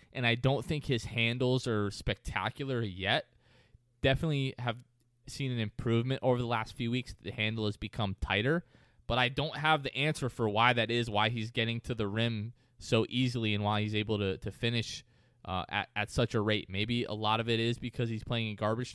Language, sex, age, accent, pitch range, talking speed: English, male, 20-39, American, 105-125 Hz, 210 wpm